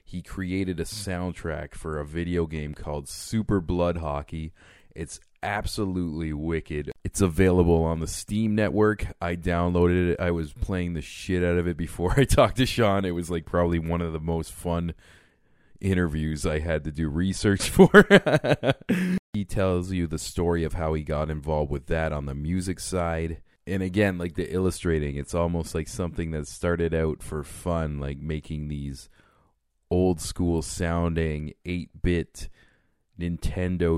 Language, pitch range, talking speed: English, 80-95 Hz, 160 wpm